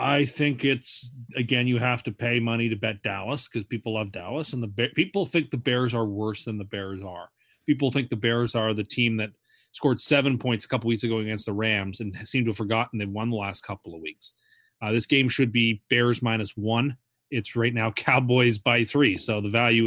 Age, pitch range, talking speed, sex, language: 30-49, 110-135 Hz, 230 wpm, male, English